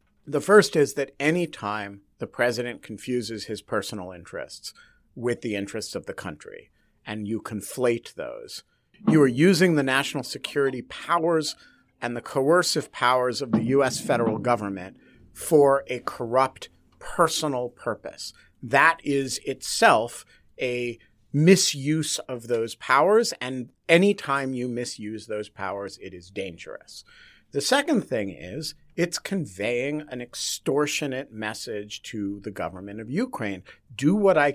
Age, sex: 50-69, male